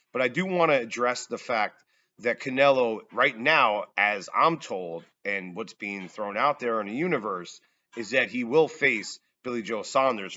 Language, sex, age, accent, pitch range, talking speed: English, male, 40-59, American, 120-160 Hz, 185 wpm